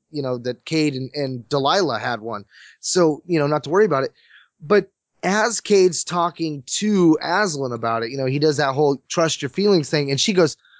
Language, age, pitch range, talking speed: English, 20-39, 135-180 Hz, 210 wpm